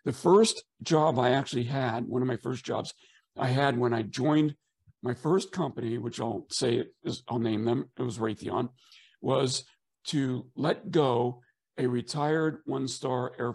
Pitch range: 120-145 Hz